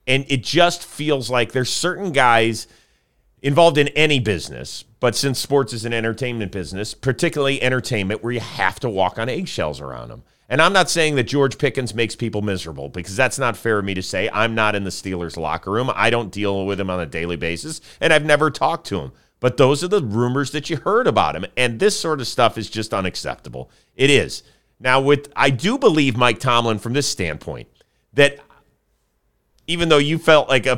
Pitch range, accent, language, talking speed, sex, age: 110-150 Hz, American, English, 210 wpm, male, 40-59